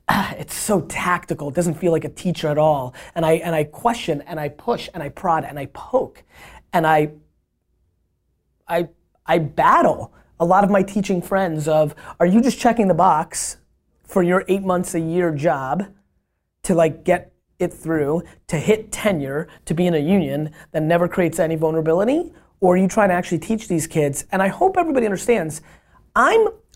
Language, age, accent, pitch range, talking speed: English, 20-39, American, 170-230 Hz, 185 wpm